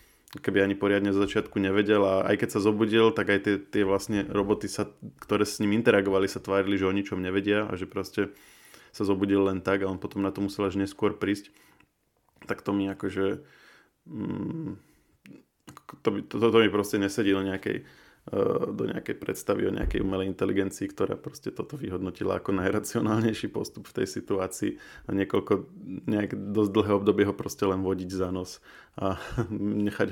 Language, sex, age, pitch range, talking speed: Slovak, male, 20-39, 95-110 Hz, 170 wpm